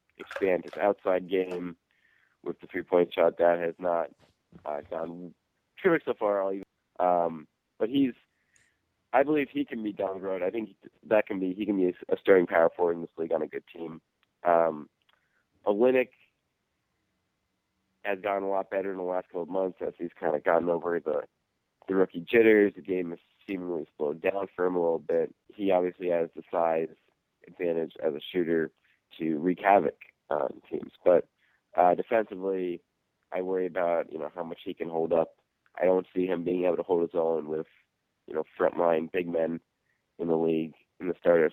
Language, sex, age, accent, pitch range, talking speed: English, male, 30-49, American, 85-95 Hz, 190 wpm